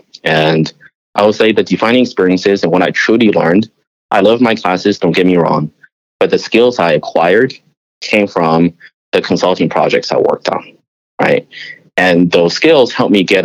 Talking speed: 180 wpm